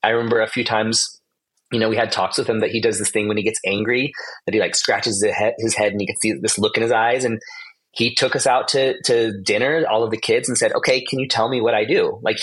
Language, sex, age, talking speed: English, male, 30-49, 285 wpm